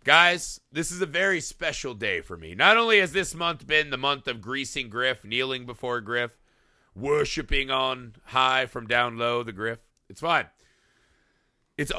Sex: male